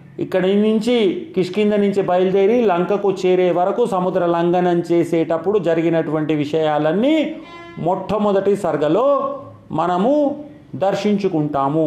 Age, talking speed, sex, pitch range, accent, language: 40-59, 85 wpm, male, 170-225 Hz, native, Telugu